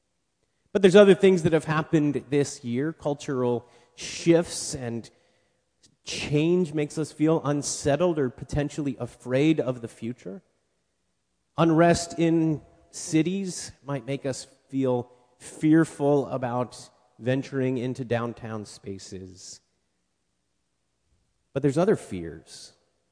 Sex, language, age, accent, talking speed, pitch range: male, English, 30-49, American, 105 wpm, 115-165 Hz